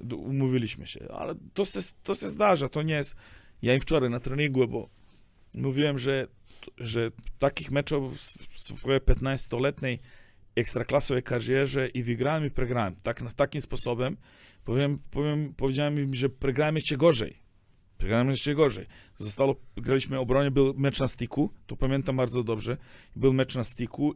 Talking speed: 145 wpm